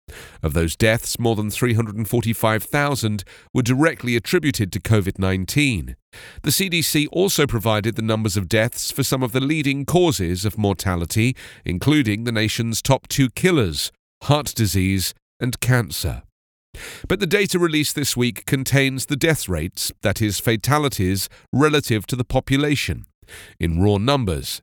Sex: male